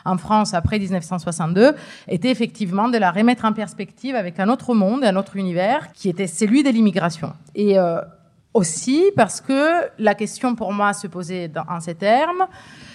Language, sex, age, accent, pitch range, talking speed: French, female, 30-49, French, 185-245 Hz, 170 wpm